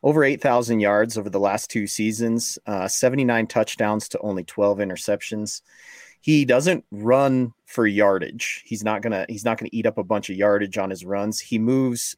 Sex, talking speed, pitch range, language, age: male, 185 wpm, 100-120 Hz, English, 30-49